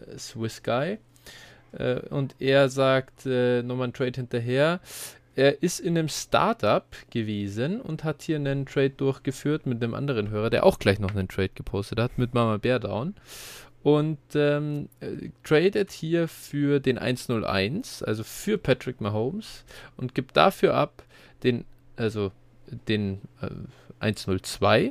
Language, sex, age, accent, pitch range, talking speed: German, male, 20-39, German, 110-145 Hz, 140 wpm